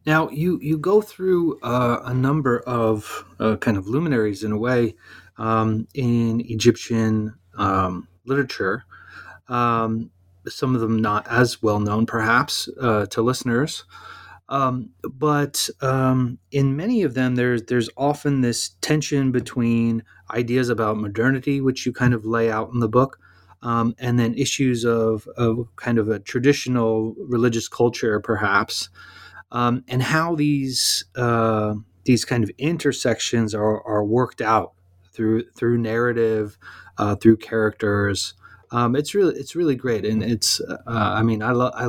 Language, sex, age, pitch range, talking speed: English, male, 30-49, 110-125 Hz, 150 wpm